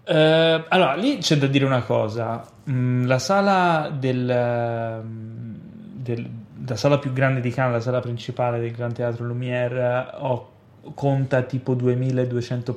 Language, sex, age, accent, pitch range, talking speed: Italian, male, 30-49, native, 120-145 Hz, 135 wpm